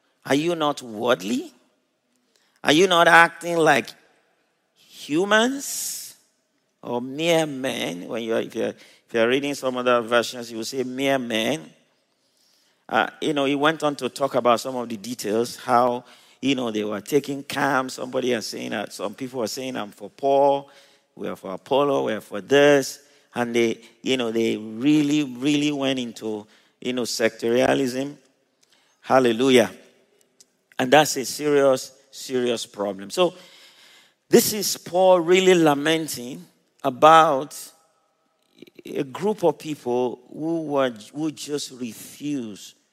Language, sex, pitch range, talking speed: English, male, 120-150 Hz, 145 wpm